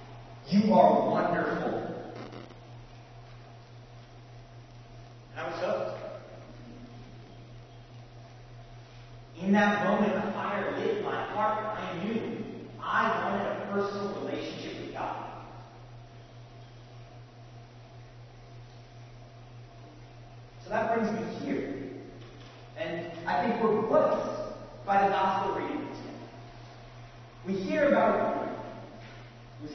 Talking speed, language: 85 wpm, English